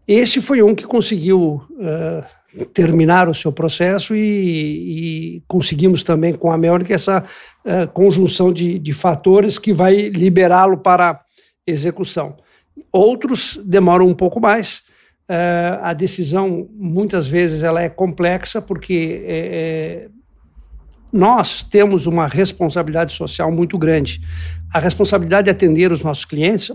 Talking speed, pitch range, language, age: 130 wpm, 170-205 Hz, Portuguese, 60-79